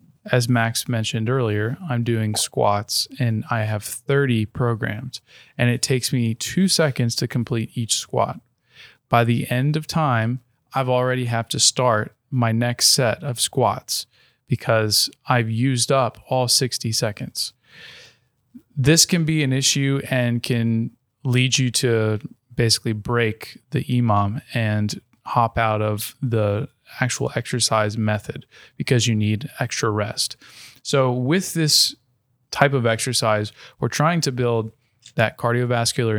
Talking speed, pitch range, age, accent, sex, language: 140 wpm, 115-130 Hz, 20-39, American, male, English